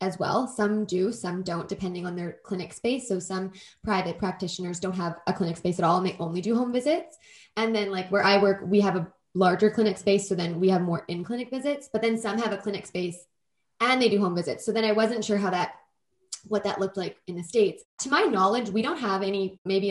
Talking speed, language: 245 wpm, English